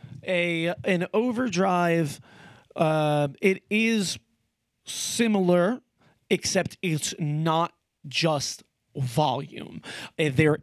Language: English